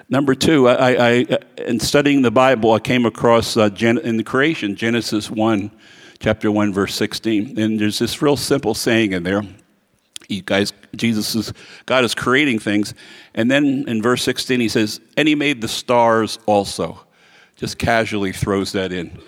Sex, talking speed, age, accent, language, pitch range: male, 175 wpm, 50-69, American, English, 105-125 Hz